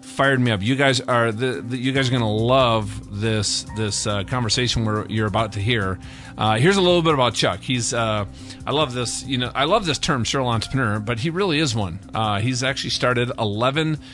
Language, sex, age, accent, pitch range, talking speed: English, male, 40-59, American, 110-135 Hz, 230 wpm